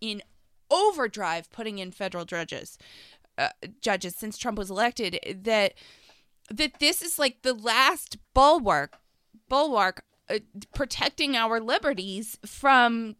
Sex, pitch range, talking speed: female, 200-255 Hz, 120 wpm